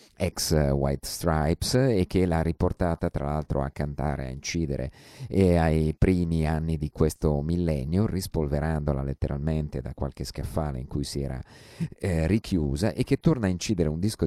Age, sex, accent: 50-69, male, native